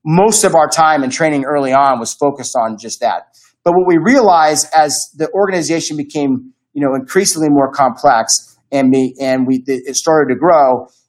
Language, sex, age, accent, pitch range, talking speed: English, male, 30-49, American, 130-160 Hz, 185 wpm